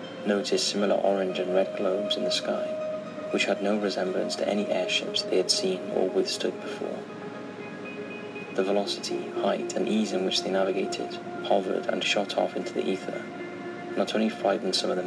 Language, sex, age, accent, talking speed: English, male, 30-49, British, 175 wpm